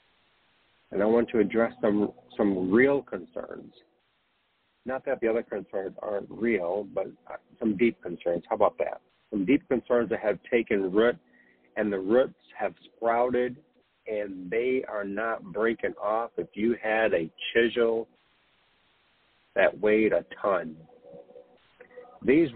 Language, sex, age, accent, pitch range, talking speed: English, male, 50-69, American, 105-130 Hz, 135 wpm